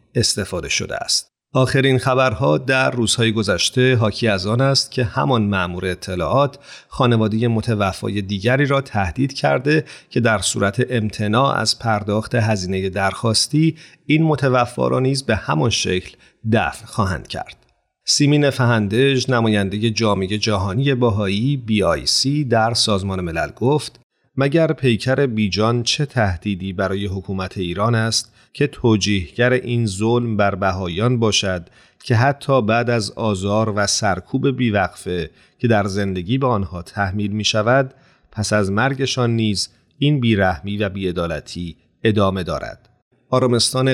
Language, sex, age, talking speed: Persian, male, 40-59, 130 wpm